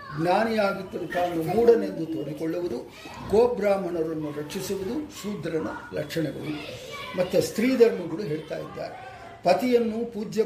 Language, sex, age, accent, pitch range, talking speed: English, male, 50-69, Indian, 165-205 Hz, 145 wpm